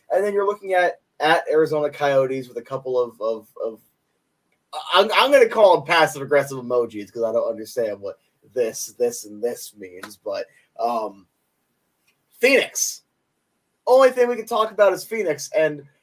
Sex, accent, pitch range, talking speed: male, American, 130-215 Hz, 170 wpm